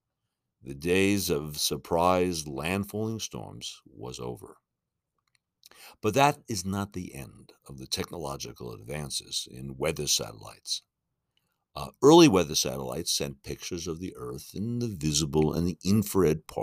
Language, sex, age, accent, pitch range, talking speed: English, male, 60-79, American, 80-105 Hz, 130 wpm